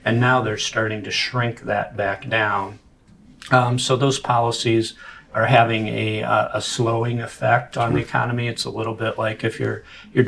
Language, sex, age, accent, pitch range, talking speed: English, male, 50-69, American, 110-125 Hz, 180 wpm